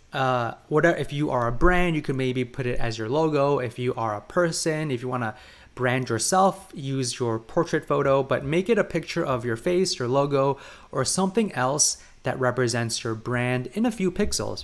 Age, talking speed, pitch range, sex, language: 20-39, 210 wpm, 125-165 Hz, male, English